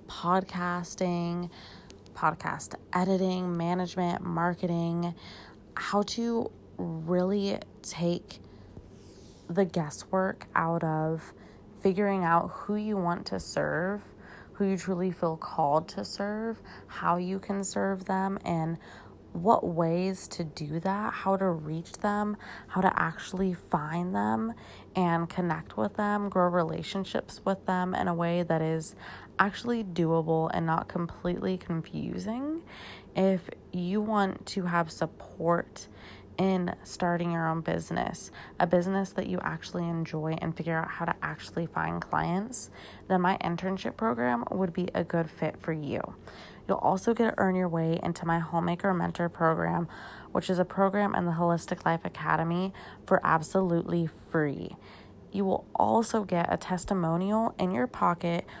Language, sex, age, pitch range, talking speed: English, female, 20-39, 165-190 Hz, 140 wpm